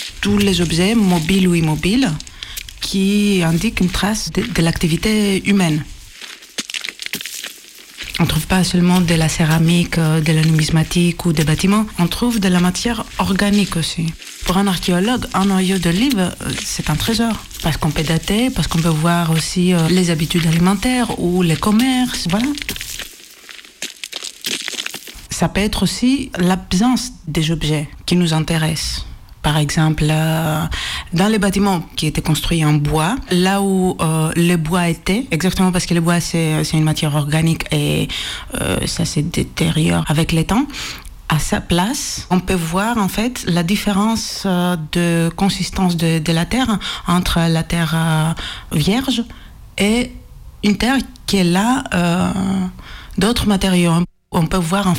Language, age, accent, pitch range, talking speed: French, 60-79, French, 165-200 Hz, 150 wpm